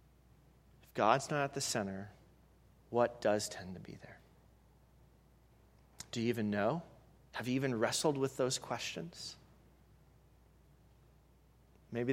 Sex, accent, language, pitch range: male, American, English, 105-130 Hz